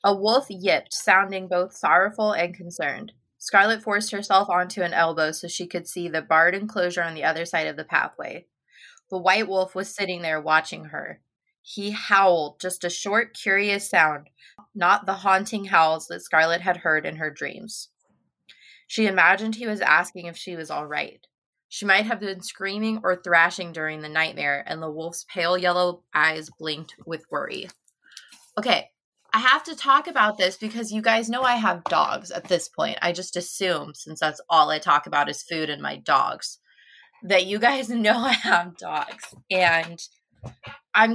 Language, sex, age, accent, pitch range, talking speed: English, female, 20-39, American, 165-215 Hz, 180 wpm